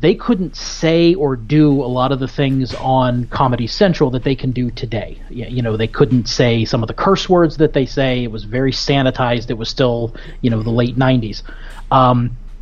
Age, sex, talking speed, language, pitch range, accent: 30-49, male, 210 wpm, English, 120-155 Hz, American